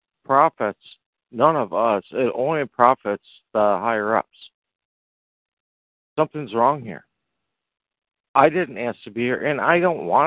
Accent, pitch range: American, 100-130 Hz